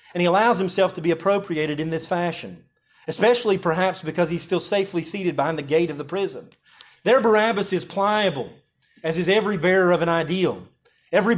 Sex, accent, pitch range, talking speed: male, American, 160-195 Hz, 185 wpm